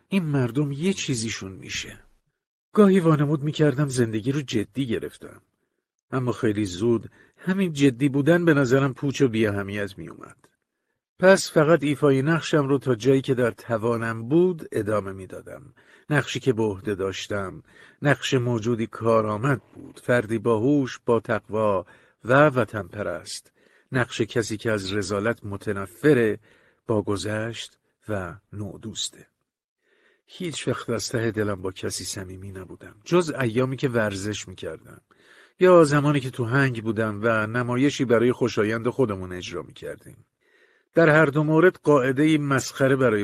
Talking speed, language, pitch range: 135 wpm, Persian, 105-145 Hz